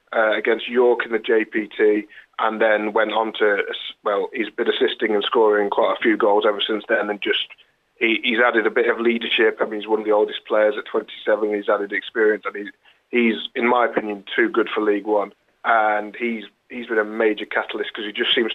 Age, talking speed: 30-49, 225 wpm